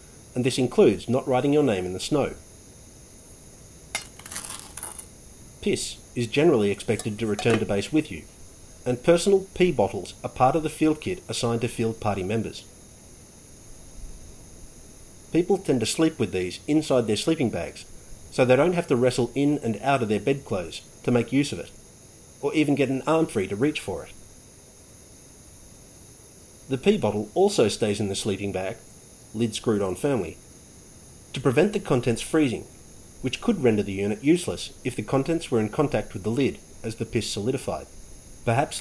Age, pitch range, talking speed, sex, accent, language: 40-59, 105-140 Hz, 170 wpm, male, Australian, English